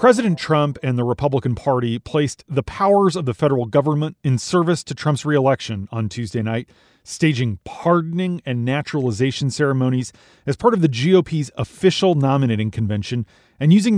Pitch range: 125-155 Hz